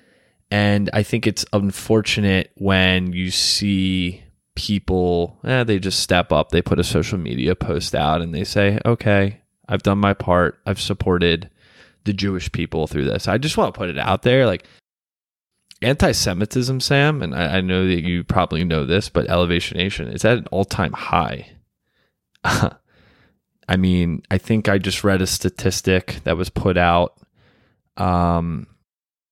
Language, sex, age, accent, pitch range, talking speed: English, male, 20-39, American, 90-105 Hz, 160 wpm